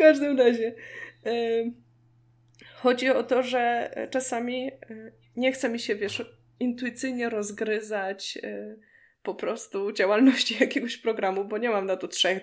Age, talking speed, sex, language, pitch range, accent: 20-39, 120 wpm, female, Polish, 210-255 Hz, native